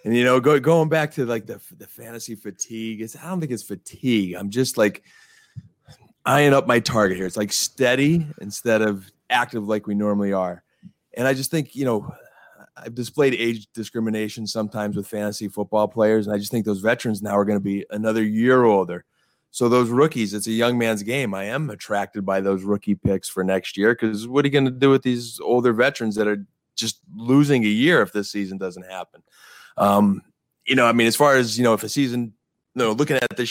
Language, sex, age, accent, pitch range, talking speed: English, male, 20-39, American, 100-125 Hz, 220 wpm